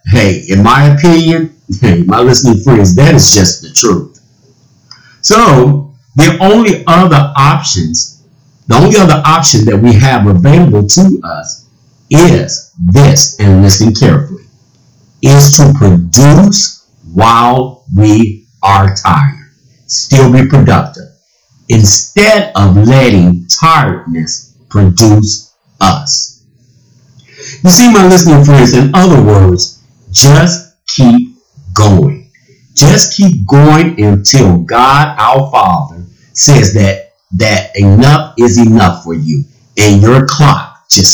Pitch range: 110-150 Hz